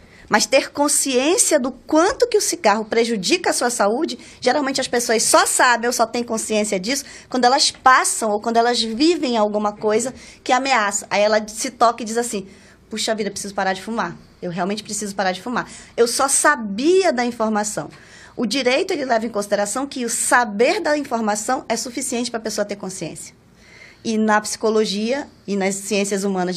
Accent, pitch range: Brazilian, 210-270 Hz